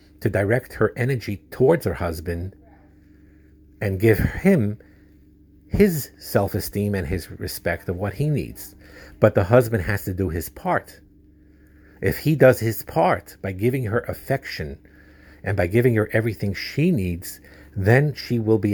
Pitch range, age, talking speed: 85-110 Hz, 50-69, 150 wpm